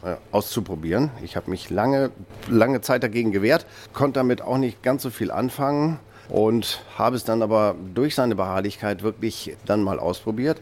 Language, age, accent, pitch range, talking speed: German, 50-69, German, 100-125 Hz, 165 wpm